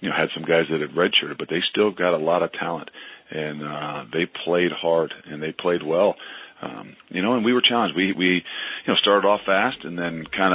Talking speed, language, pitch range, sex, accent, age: 240 wpm, English, 80-90 Hz, male, American, 40-59